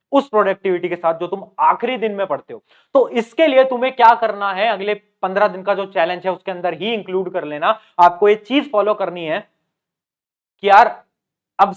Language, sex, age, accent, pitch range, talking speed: Hindi, male, 30-49, native, 170-225 Hz, 135 wpm